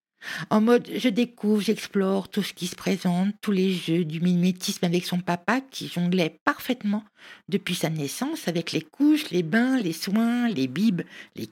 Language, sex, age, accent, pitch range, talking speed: French, female, 60-79, French, 180-225 Hz, 175 wpm